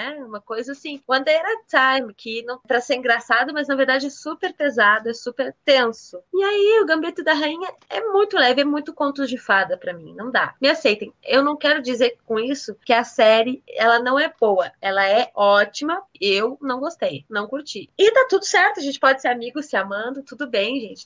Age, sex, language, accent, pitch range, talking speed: 20-39, female, Portuguese, Brazilian, 215-290 Hz, 215 wpm